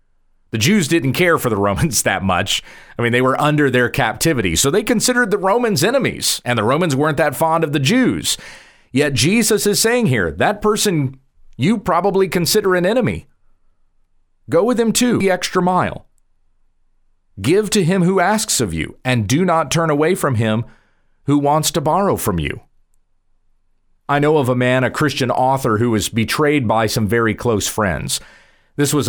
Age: 40-59